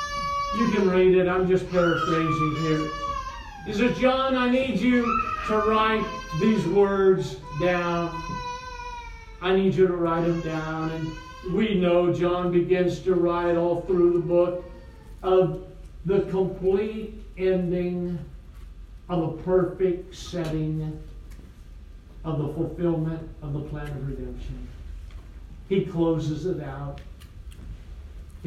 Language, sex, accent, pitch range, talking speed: English, male, American, 150-245 Hz, 120 wpm